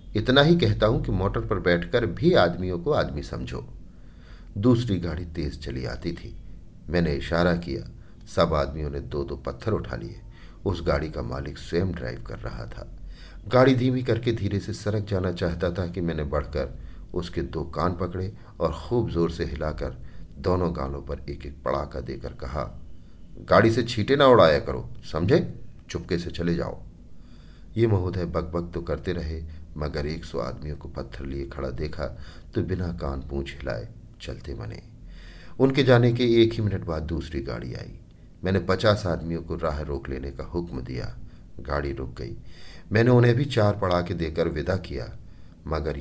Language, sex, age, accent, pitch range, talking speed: Hindi, male, 50-69, native, 75-95 Hz, 175 wpm